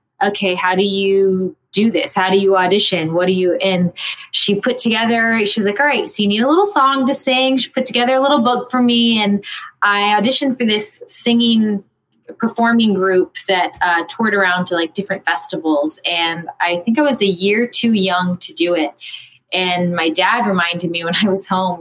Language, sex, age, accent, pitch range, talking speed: English, female, 20-39, American, 175-230 Hz, 205 wpm